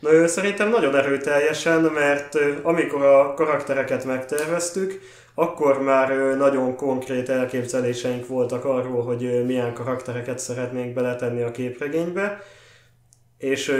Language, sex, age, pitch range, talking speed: Hungarian, male, 20-39, 125-145 Hz, 105 wpm